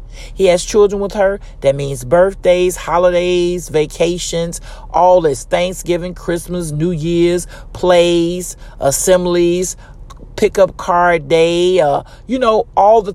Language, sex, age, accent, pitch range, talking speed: English, male, 40-59, American, 155-200 Hz, 120 wpm